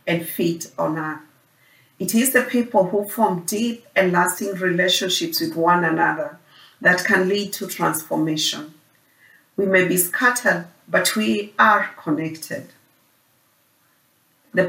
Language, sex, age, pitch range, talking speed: English, female, 40-59, 165-205 Hz, 125 wpm